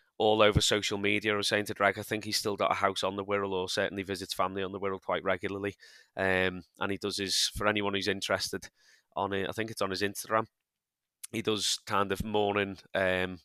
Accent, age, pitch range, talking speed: British, 20-39, 95-105 Hz, 225 wpm